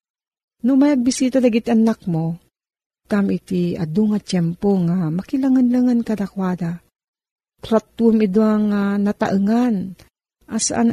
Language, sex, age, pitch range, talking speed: Filipino, female, 40-59, 180-225 Hz, 100 wpm